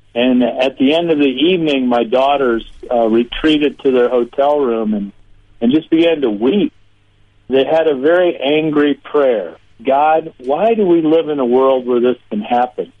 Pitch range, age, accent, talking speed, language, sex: 110-145 Hz, 50-69, American, 180 wpm, English, male